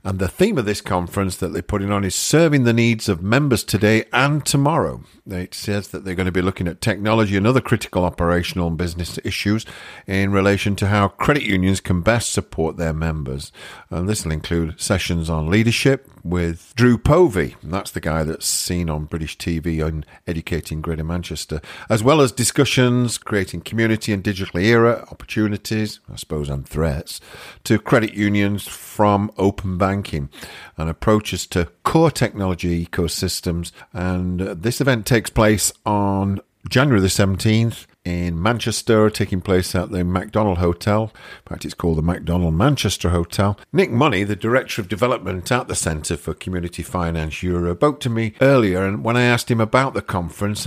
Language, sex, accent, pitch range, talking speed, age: English, male, British, 85-110 Hz, 175 wpm, 50-69